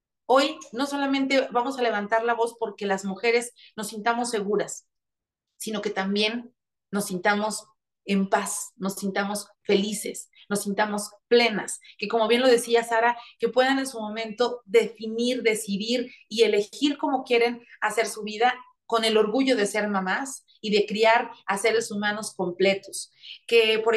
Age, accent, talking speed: 40-59, Mexican, 155 wpm